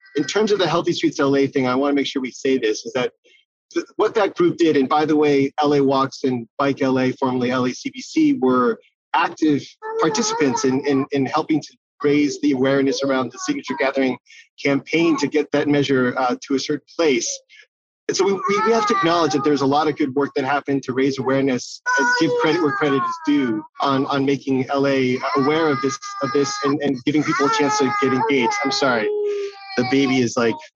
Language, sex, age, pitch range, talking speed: English, male, 30-49, 135-210 Hz, 205 wpm